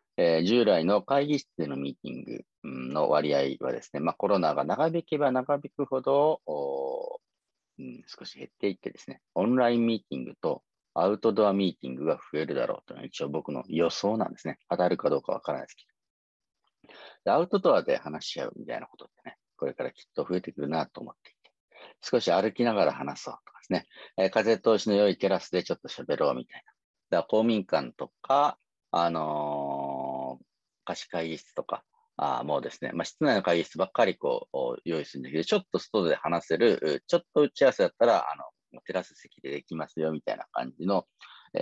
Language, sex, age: Japanese, male, 40-59